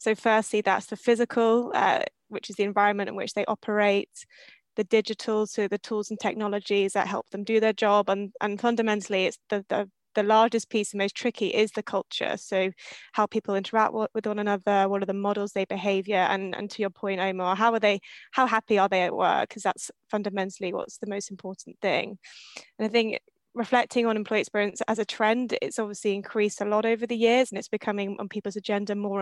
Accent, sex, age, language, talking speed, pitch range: British, female, 20-39, English, 210 wpm, 200-220 Hz